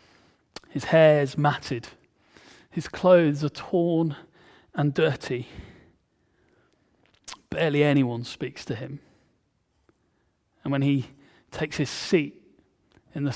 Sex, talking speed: male, 105 wpm